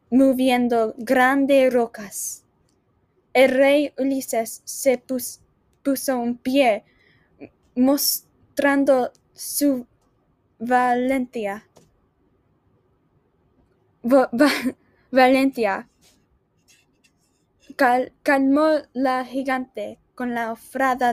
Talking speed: 70 wpm